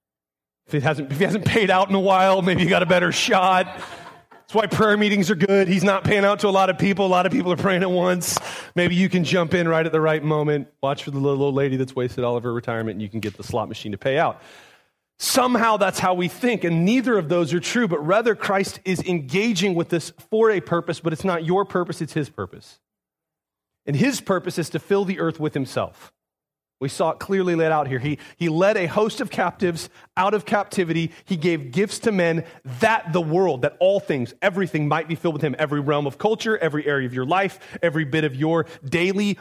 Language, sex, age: English, male, 30-49